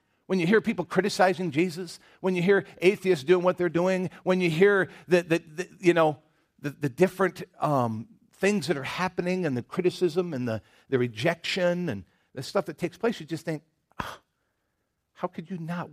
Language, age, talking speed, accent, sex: English, 50-69, 190 wpm, American, male